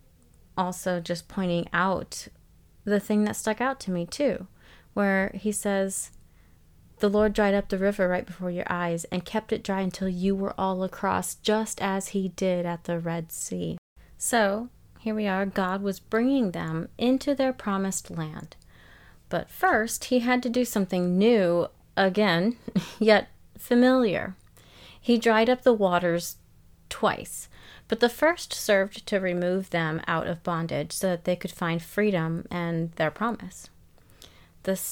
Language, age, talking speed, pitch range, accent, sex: English, 30-49, 155 wpm, 175-220 Hz, American, female